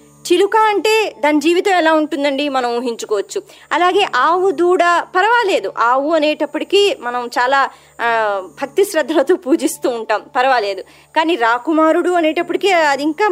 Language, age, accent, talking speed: Telugu, 20-39, native, 110 wpm